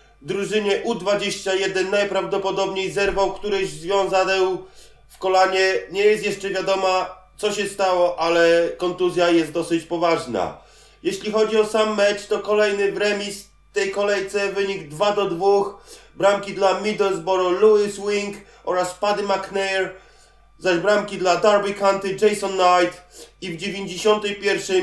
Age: 30-49